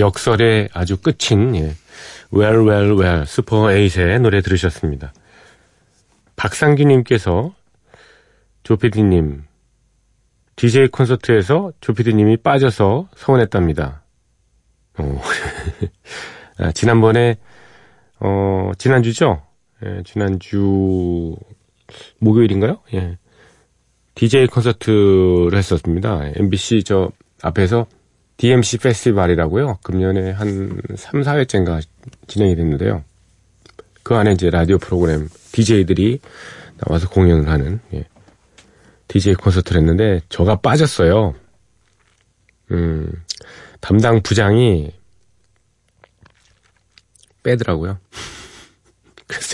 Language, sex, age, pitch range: Korean, male, 40-59, 90-115 Hz